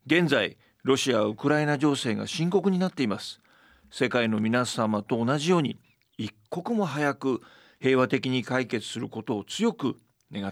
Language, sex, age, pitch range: Japanese, male, 40-59, 125-160 Hz